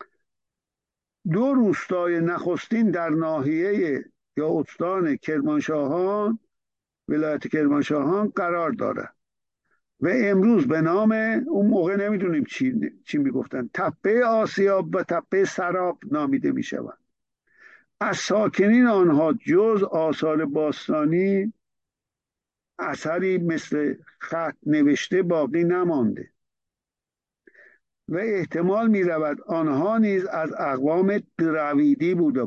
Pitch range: 170-225 Hz